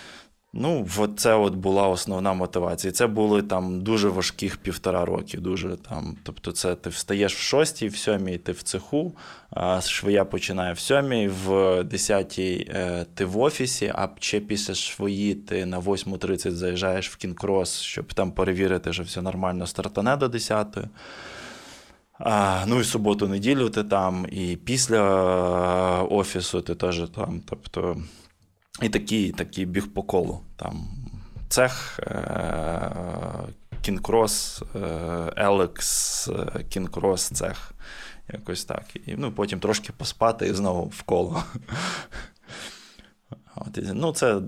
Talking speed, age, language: 125 wpm, 20-39, Russian